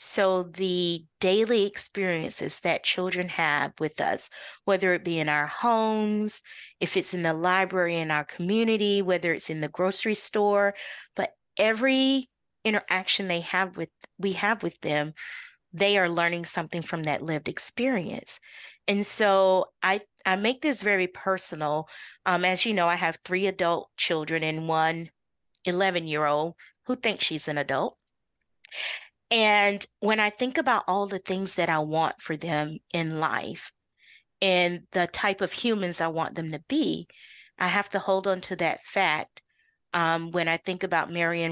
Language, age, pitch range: English, 30-49, 165-200 Hz